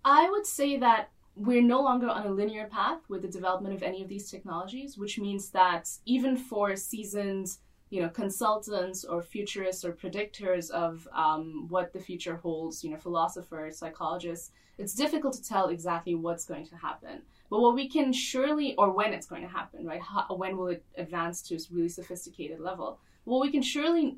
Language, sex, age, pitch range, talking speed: English, female, 10-29, 180-230 Hz, 190 wpm